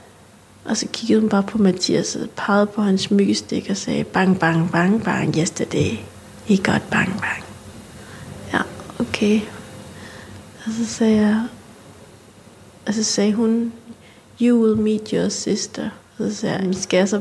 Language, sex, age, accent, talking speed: Danish, female, 30-49, native, 160 wpm